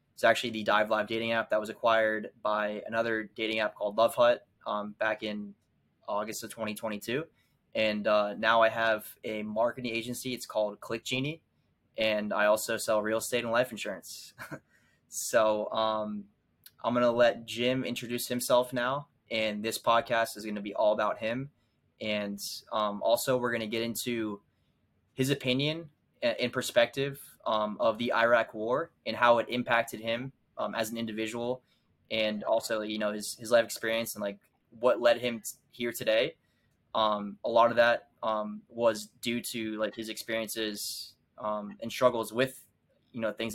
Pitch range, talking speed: 105-120 Hz, 170 wpm